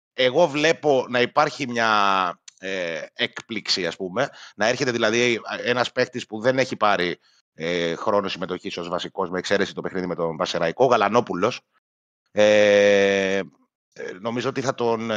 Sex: male